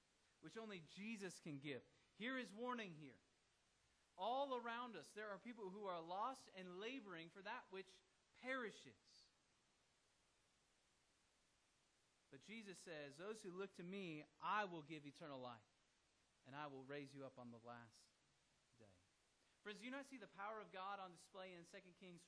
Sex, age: male, 30-49